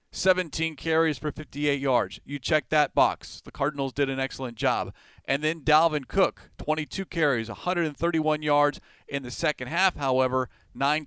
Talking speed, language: 155 wpm, English